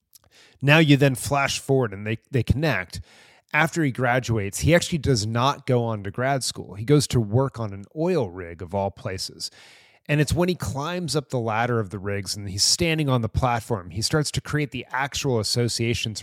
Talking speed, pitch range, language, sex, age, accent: 205 wpm, 110-140 Hz, English, male, 30-49, American